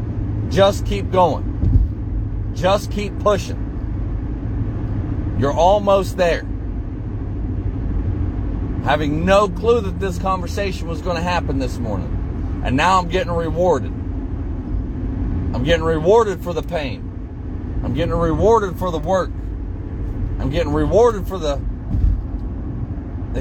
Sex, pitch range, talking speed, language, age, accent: male, 90-105 Hz, 115 wpm, English, 40-59, American